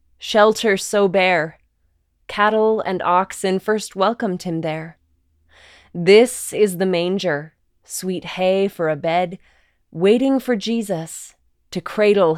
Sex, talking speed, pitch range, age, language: female, 115 wpm, 165-210 Hz, 20-39, English